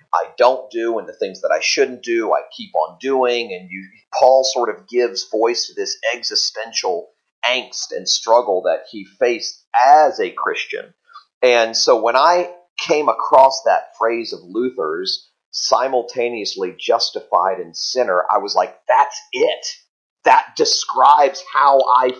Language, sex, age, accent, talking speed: English, male, 40-59, American, 150 wpm